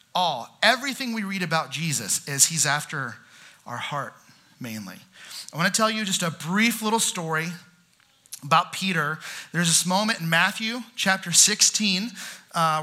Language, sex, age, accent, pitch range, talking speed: English, male, 30-49, American, 160-205 Hz, 150 wpm